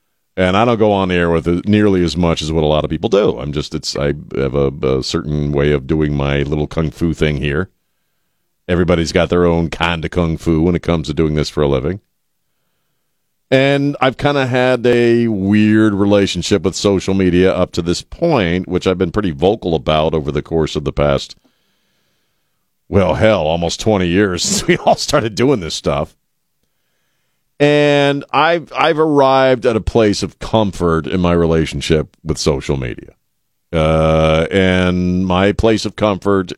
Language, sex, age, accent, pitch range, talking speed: English, male, 50-69, American, 80-100 Hz, 185 wpm